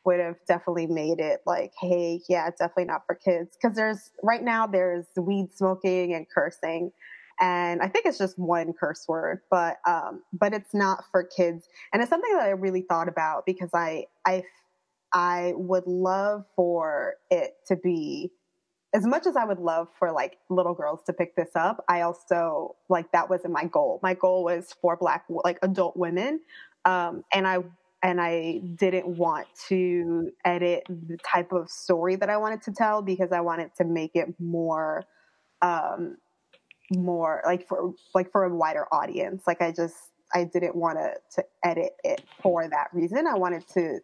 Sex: female